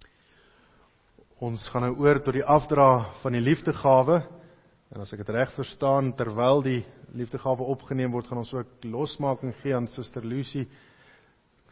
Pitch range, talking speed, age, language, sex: 115-145 Hz, 155 wpm, 50-69, English, male